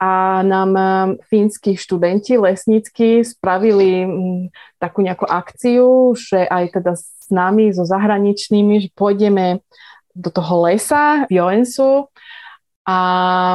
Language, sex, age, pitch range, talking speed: Slovak, female, 20-39, 185-220 Hz, 105 wpm